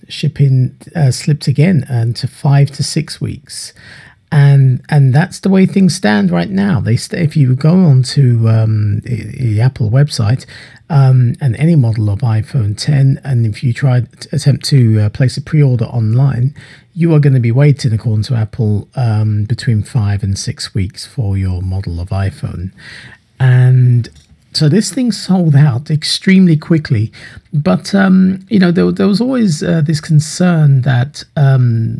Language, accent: English, British